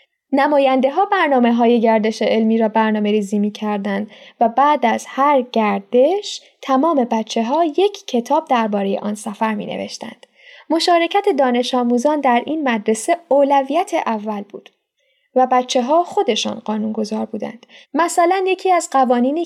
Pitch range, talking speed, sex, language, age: 220-295 Hz, 135 wpm, female, Persian, 10-29